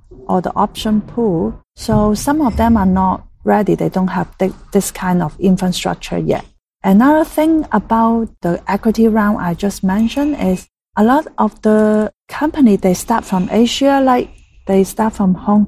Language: Chinese